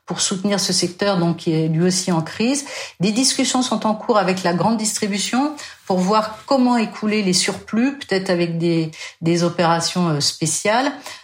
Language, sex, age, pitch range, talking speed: French, female, 50-69, 185-230 Hz, 170 wpm